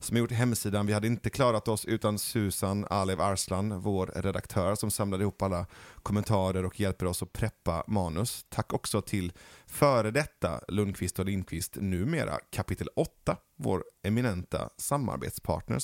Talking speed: 150 wpm